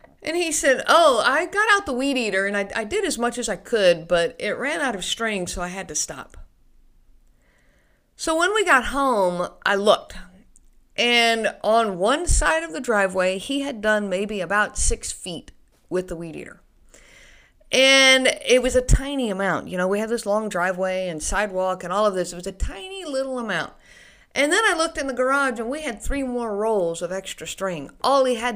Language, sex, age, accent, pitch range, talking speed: English, female, 50-69, American, 195-270 Hz, 210 wpm